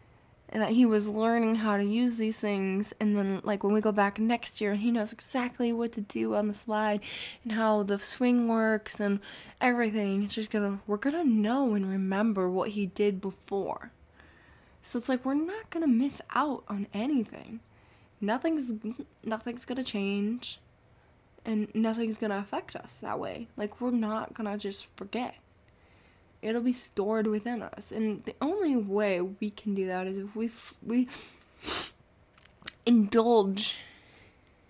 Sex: female